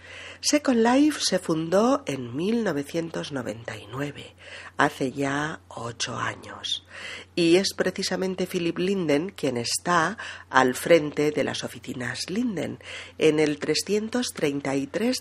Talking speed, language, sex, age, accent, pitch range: 105 wpm, Spanish, female, 40-59, Spanish, 135-190 Hz